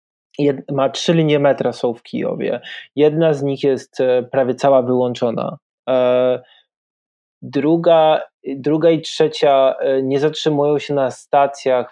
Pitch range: 125-145 Hz